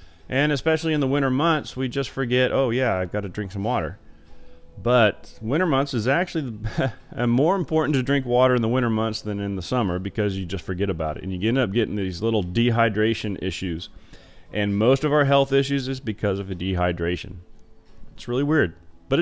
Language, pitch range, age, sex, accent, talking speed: English, 105-140 Hz, 30-49, male, American, 205 wpm